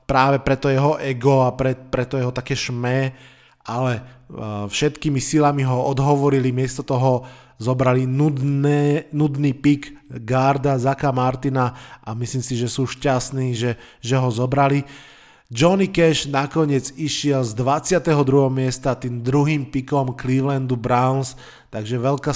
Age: 20-39